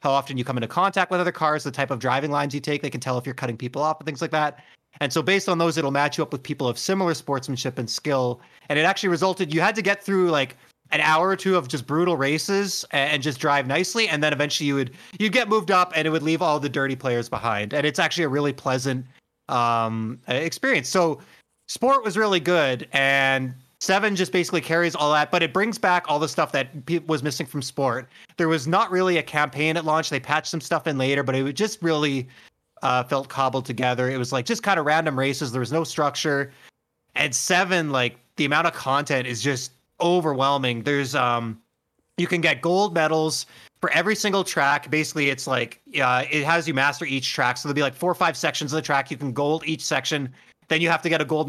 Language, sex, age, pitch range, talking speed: English, male, 30-49, 135-170 Hz, 240 wpm